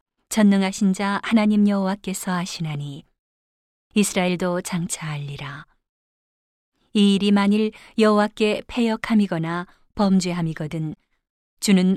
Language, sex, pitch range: Korean, female, 175-210 Hz